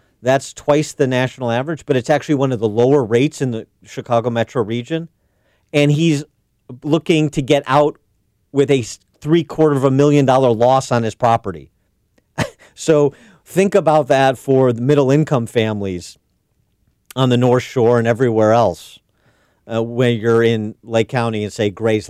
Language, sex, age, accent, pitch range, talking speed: English, male, 40-59, American, 105-135 Hz, 165 wpm